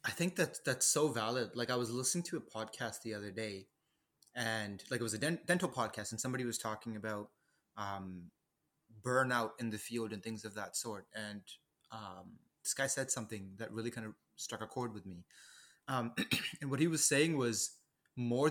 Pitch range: 110-140 Hz